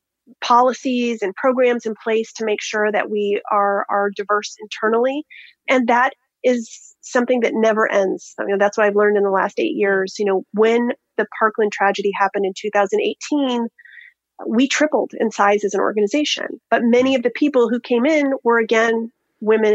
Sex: female